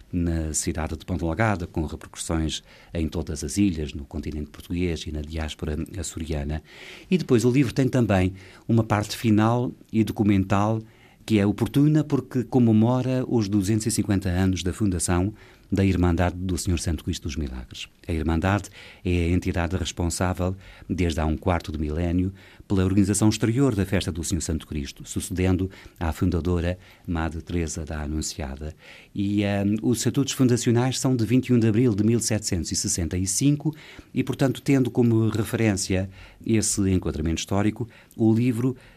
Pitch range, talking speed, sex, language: 85-115 Hz, 150 wpm, male, Portuguese